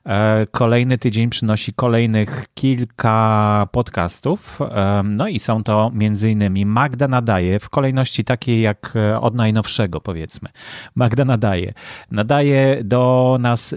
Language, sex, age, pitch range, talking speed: Polish, male, 30-49, 105-130 Hz, 115 wpm